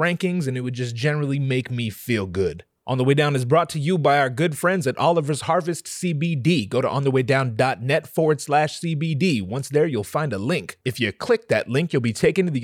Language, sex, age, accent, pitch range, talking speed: English, male, 30-49, American, 135-175 Hz, 230 wpm